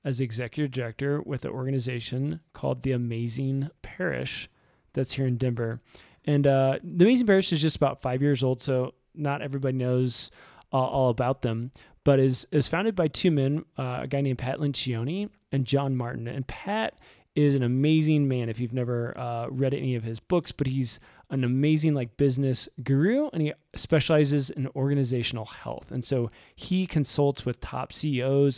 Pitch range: 125-150 Hz